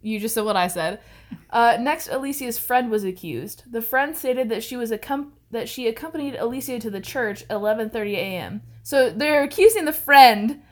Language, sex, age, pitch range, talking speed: English, female, 20-39, 210-260 Hz, 185 wpm